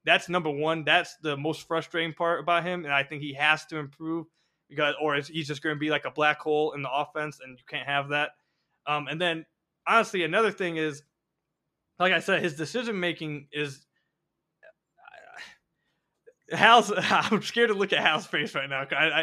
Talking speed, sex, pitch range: 185 wpm, male, 155-180 Hz